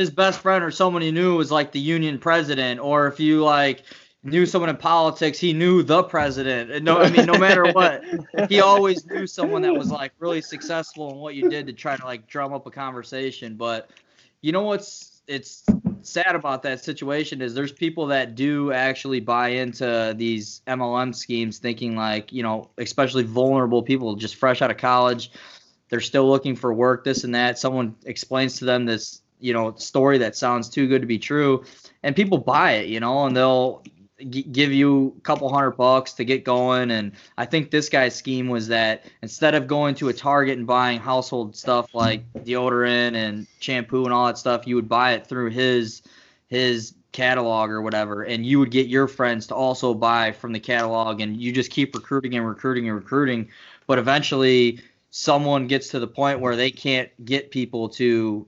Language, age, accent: English, 20-39, American